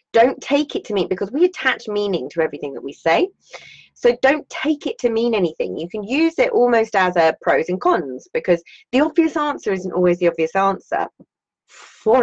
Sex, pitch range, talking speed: female, 185-275 Hz, 200 wpm